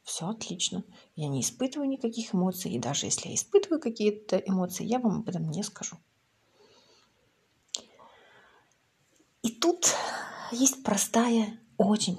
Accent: native